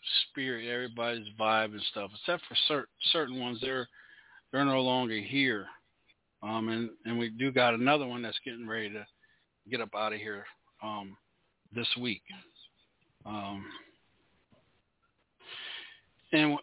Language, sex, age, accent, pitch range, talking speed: English, male, 40-59, American, 115-140 Hz, 135 wpm